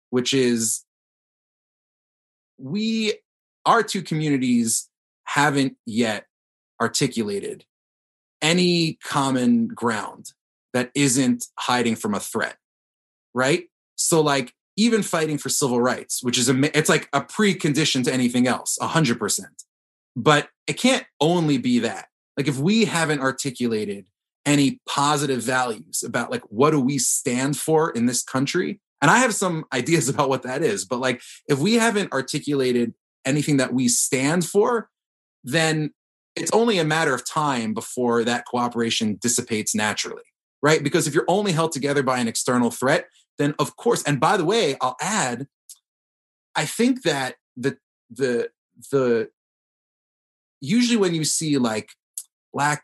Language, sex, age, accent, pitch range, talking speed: English, male, 30-49, American, 120-160 Hz, 140 wpm